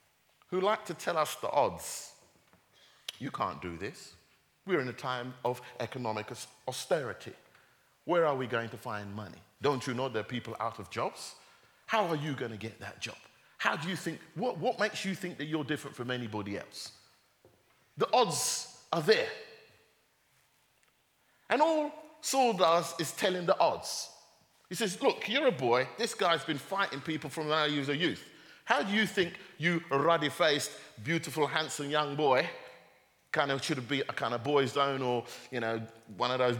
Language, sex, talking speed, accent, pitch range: English, male, 180 wpm, British, 125-200 Hz